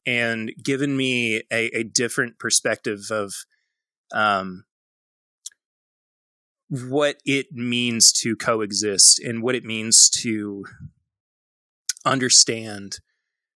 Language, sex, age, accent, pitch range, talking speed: English, male, 30-49, American, 115-165 Hz, 90 wpm